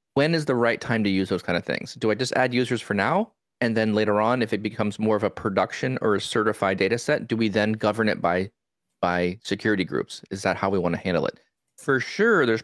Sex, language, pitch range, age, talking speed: male, English, 100-115 Hz, 30-49, 255 wpm